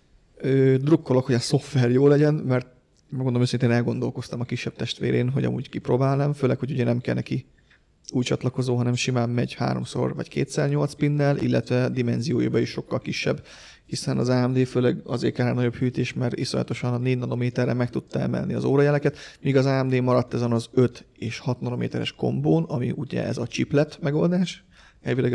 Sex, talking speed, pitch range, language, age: male, 175 wpm, 120-145 Hz, Hungarian, 30-49